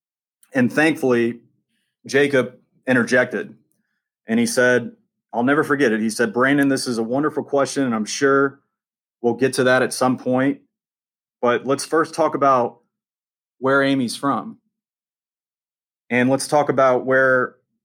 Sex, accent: male, American